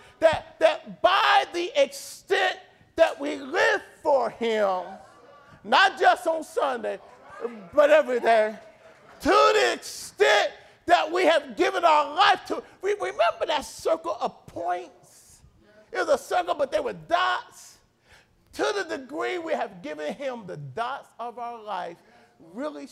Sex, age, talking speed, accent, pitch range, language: male, 40-59, 140 wpm, American, 235-330 Hz, English